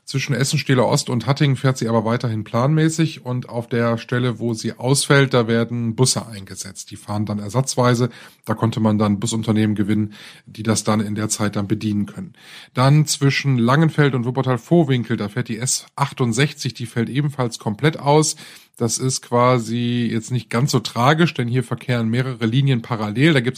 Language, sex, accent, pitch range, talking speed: German, male, German, 115-145 Hz, 180 wpm